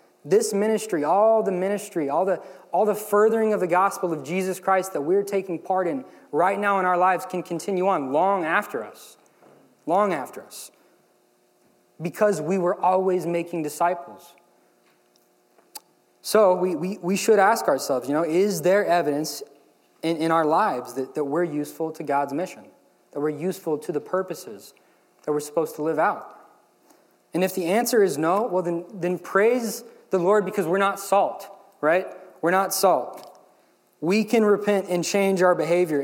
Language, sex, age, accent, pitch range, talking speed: English, male, 20-39, American, 165-195 Hz, 175 wpm